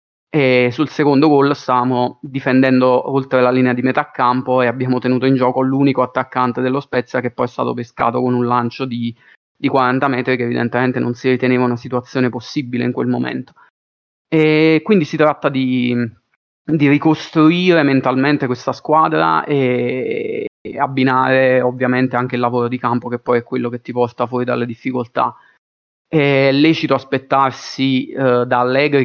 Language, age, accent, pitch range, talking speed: Italian, 30-49, native, 125-135 Hz, 160 wpm